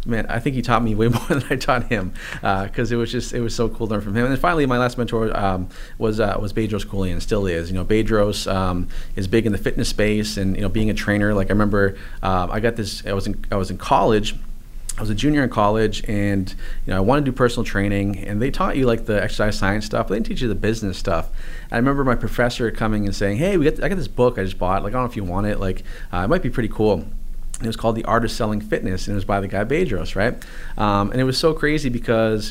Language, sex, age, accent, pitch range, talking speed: English, male, 30-49, American, 100-120 Hz, 295 wpm